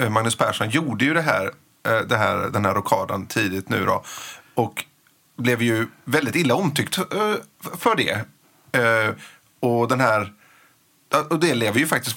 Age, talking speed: 30-49, 150 wpm